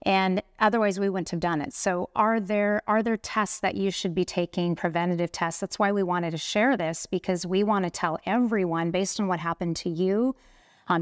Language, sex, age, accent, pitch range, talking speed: English, female, 30-49, American, 175-210 Hz, 220 wpm